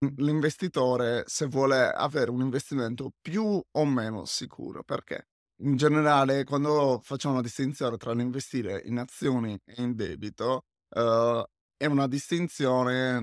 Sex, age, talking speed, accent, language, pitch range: male, 30-49, 125 wpm, native, Italian, 120-150 Hz